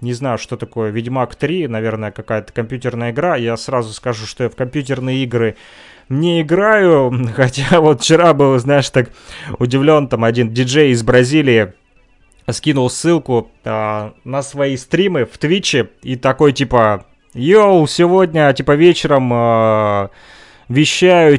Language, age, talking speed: Russian, 20-39, 130 wpm